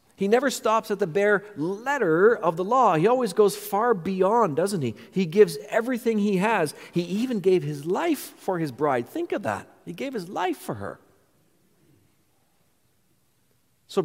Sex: male